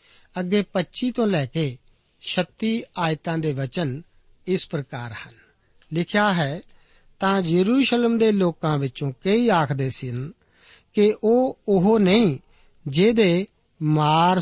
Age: 50-69